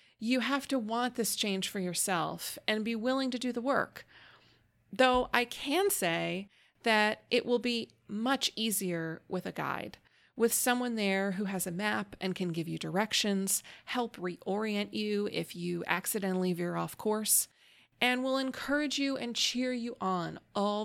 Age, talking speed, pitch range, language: 30-49, 165 wpm, 185-245 Hz, English